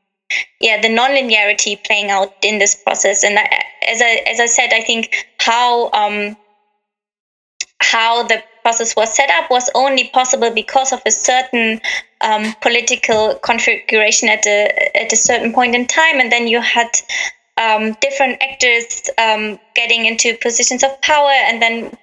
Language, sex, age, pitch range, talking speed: English, female, 20-39, 215-255 Hz, 160 wpm